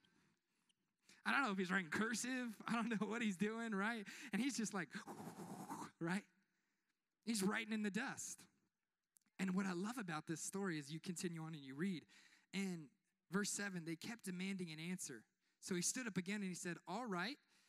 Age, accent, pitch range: 20-39, American, 175-225 Hz